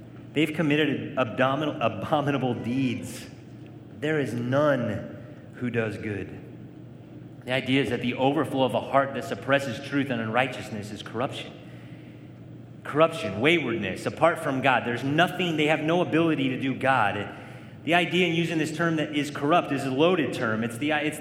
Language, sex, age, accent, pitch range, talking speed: English, male, 30-49, American, 120-155 Hz, 155 wpm